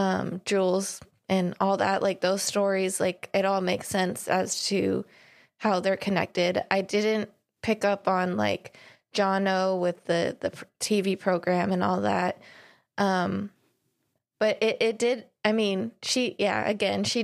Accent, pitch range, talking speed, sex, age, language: American, 185-210 Hz, 155 wpm, female, 20-39, English